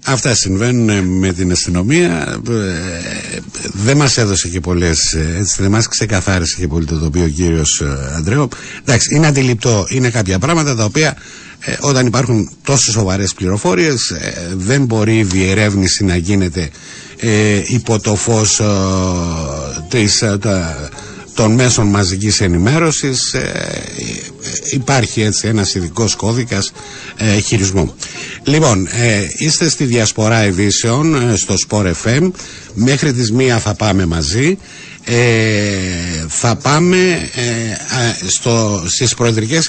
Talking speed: 110 wpm